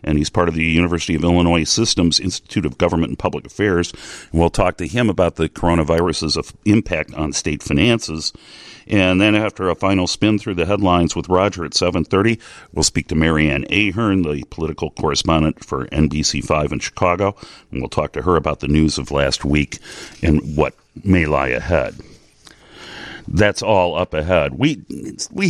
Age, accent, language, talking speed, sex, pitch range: 50-69, American, English, 170 wpm, male, 70-90 Hz